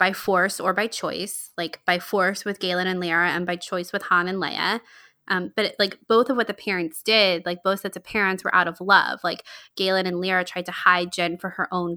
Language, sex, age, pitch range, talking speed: English, female, 20-39, 175-195 Hz, 250 wpm